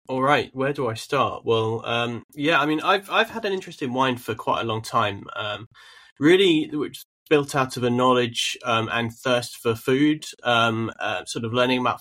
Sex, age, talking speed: male, 20-39, 210 wpm